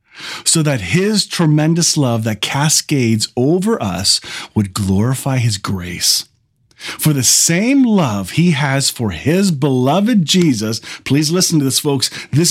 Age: 40-59